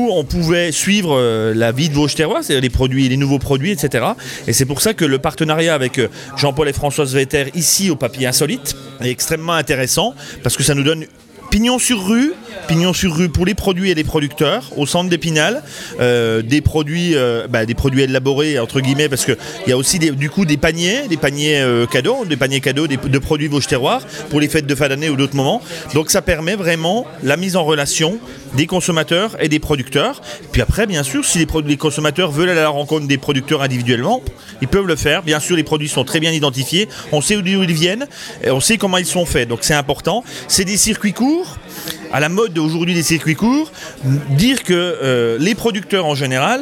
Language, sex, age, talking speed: French, male, 30-49, 215 wpm